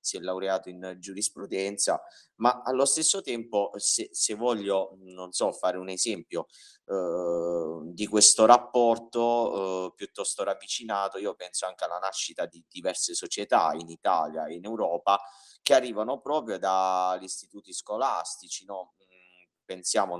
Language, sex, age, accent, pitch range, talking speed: Italian, male, 30-49, native, 90-120 Hz, 135 wpm